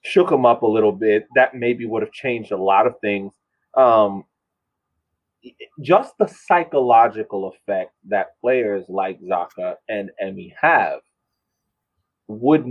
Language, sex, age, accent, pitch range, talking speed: English, male, 30-49, American, 105-150 Hz, 130 wpm